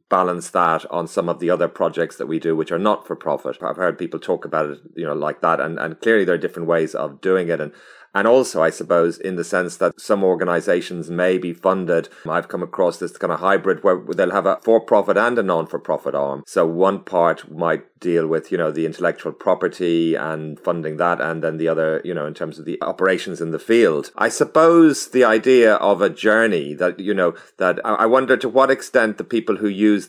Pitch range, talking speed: 85-100 Hz, 225 wpm